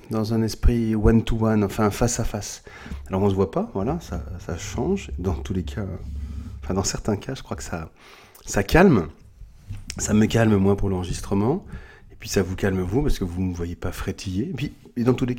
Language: French